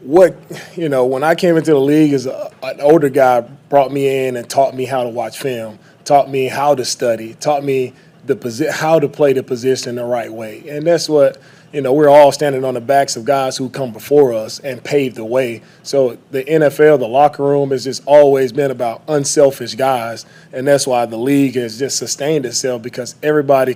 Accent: American